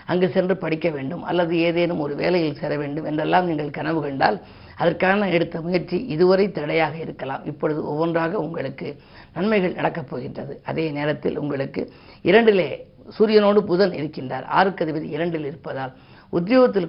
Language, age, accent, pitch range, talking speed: Tamil, 50-69, native, 155-190 Hz, 130 wpm